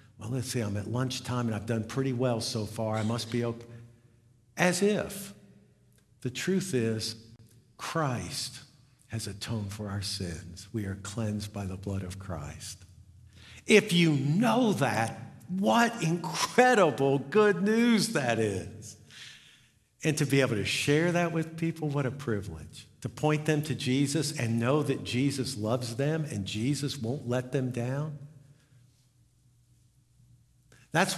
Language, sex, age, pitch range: English, male, 50-69, 105-135 Hz